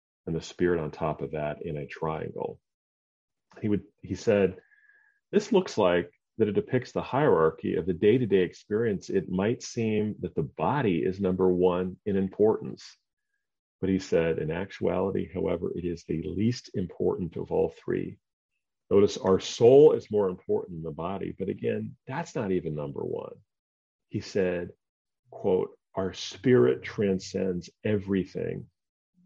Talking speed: 150 wpm